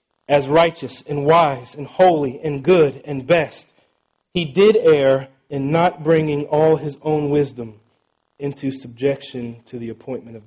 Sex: male